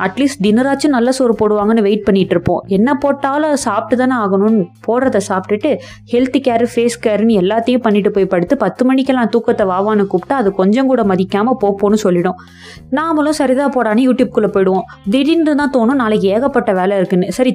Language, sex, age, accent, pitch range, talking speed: Tamil, female, 20-39, native, 200-260 Hz, 170 wpm